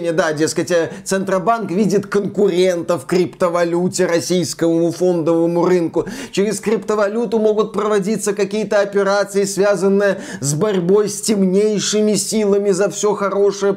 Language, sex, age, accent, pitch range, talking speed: Russian, male, 20-39, native, 185-235 Hz, 105 wpm